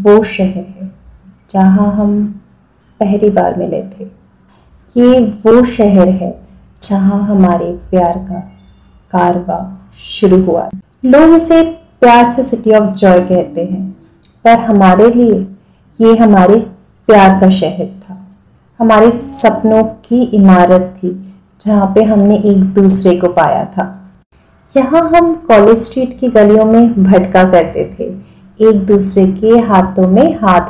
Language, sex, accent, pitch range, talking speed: Hindi, female, native, 190-235 Hz, 130 wpm